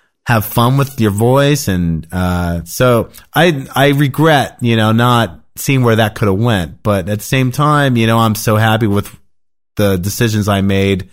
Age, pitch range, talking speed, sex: 30-49, 95-120 Hz, 190 wpm, male